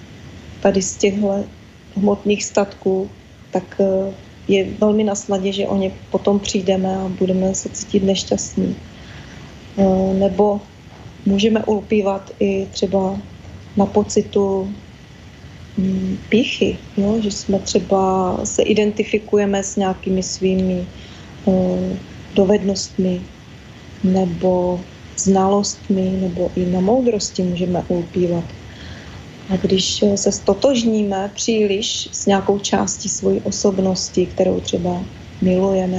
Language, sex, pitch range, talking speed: Slovak, female, 185-205 Hz, 100 wpm